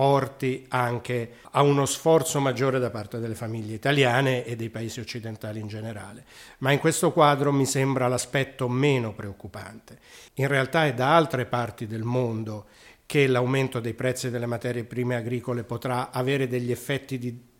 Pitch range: 120-140 Hz